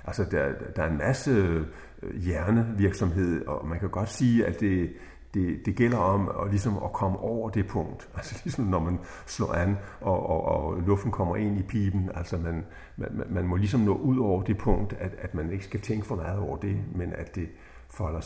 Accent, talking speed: native, 215 wpm